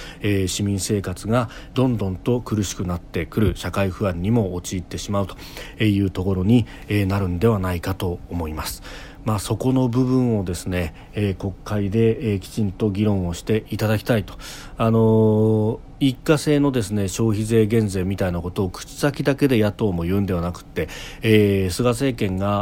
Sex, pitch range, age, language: male, 95-120 Hz, 40-59, Japanese